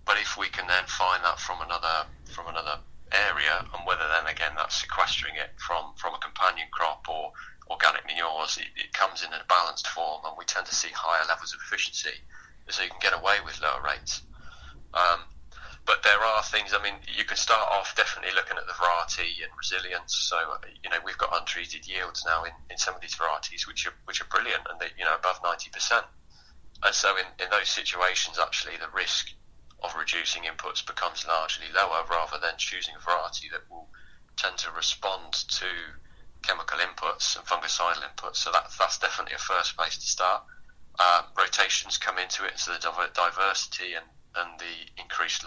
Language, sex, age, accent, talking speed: English, male, 30-49, British, 190 wpm